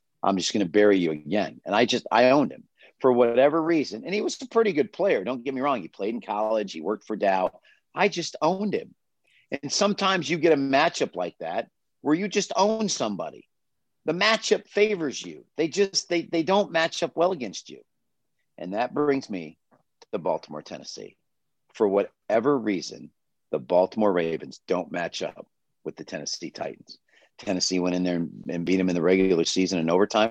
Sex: male